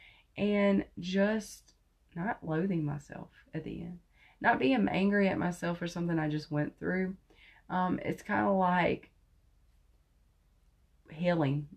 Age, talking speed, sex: 30-49, 125 wpm, female